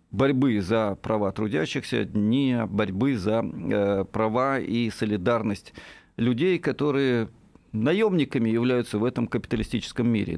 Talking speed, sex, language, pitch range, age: 110 wpm, male, Russian, 110-150 Hz, 50-69